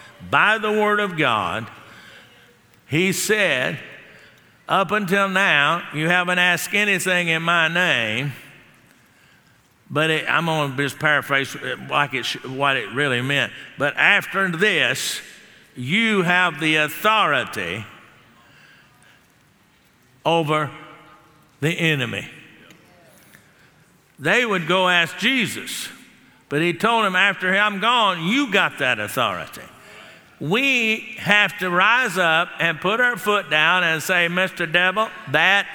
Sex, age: male, 50-69